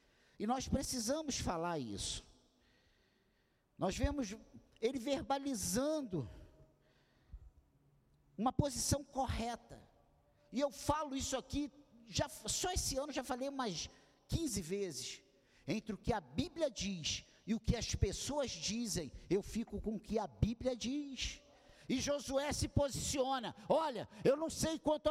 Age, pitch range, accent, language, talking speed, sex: 50-69, 260-325 Hz, Brazilian, Portuguese, 130 wpm, male